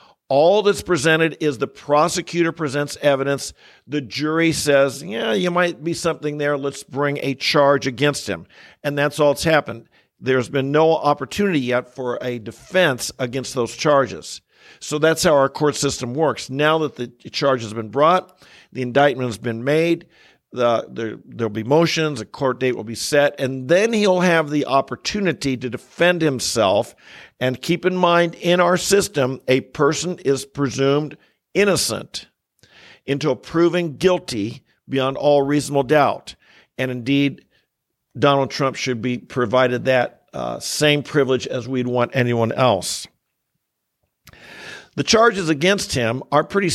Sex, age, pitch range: male, 50-69, 130-160 Hz